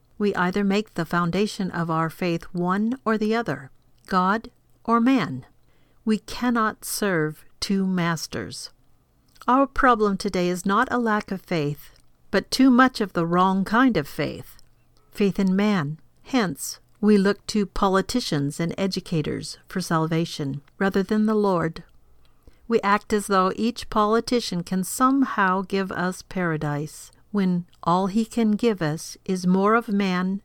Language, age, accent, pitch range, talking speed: English, 50-69, American, 165-215 Hz, 150 wpm